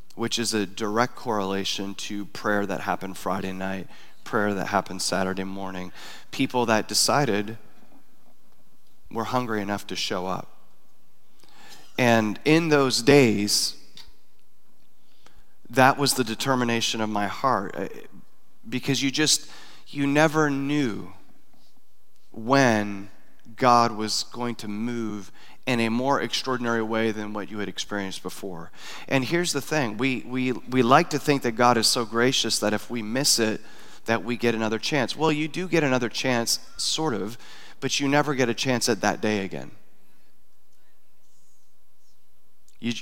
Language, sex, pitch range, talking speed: English, male, 105-135 Hz, 145 wpm